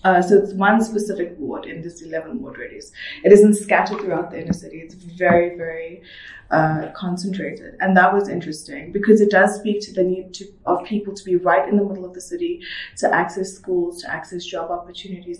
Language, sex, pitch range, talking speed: English, female, 180-220 Hz, 205 wpm